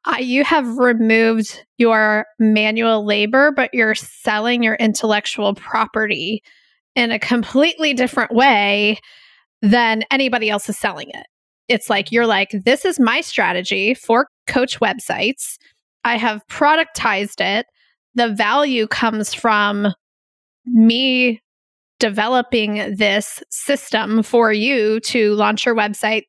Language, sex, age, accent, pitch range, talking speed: English, female, 20-39, American, 210-245 Hz, 120 wpm